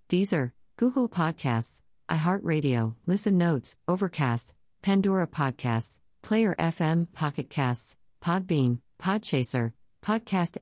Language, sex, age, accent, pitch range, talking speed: English, female, 50-69, American, 130-180 Hz, 85 wpm